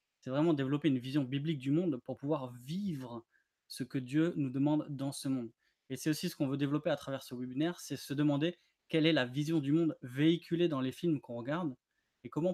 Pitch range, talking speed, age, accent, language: 135-165 Hz, 225 wpm, 20-39, French, French